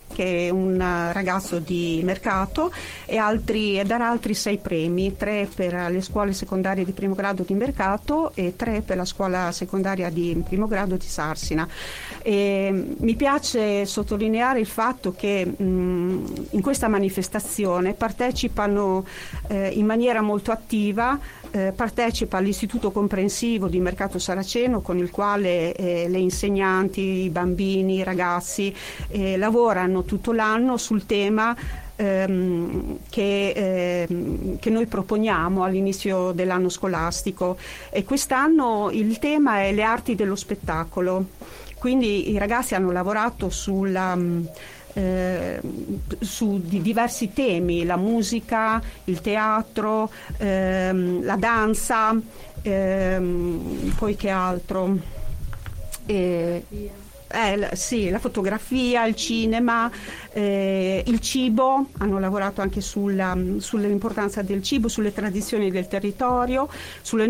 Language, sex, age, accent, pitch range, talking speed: Italian, female, 40-59, native, 185-225 Hz, 115 wpm